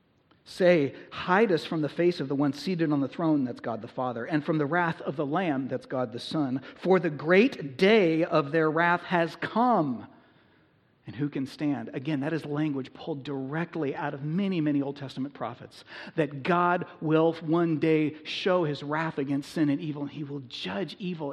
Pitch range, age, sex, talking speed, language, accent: 140-180 Hz, 40-59, male, 200 wpm, English, American